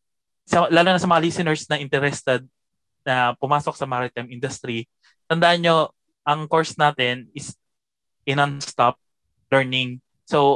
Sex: male